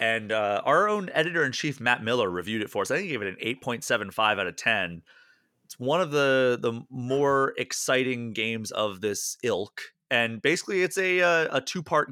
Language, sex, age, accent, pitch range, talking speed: English, male, 30-49, American, 115-140 Hz, 195 wpm